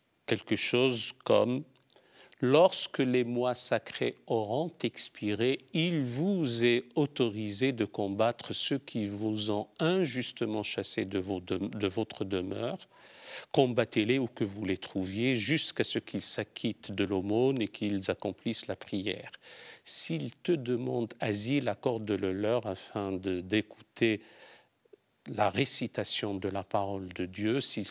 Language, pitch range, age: French, 100-130 Hz, 50-69